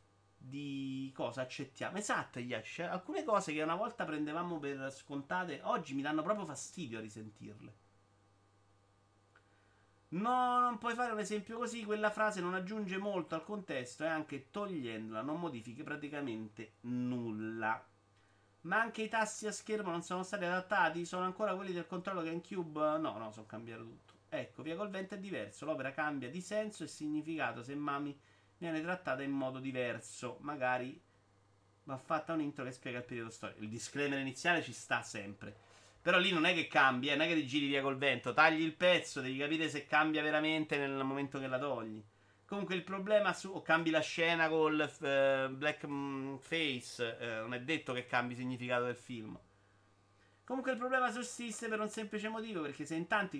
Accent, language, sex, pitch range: native, Italian, male, 120-175 Hz